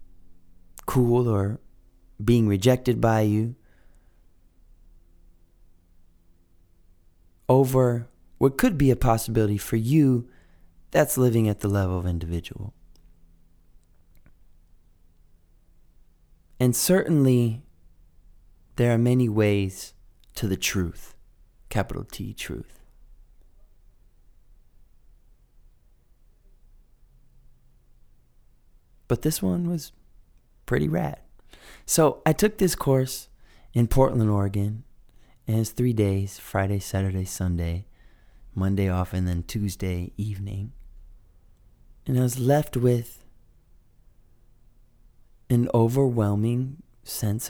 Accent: American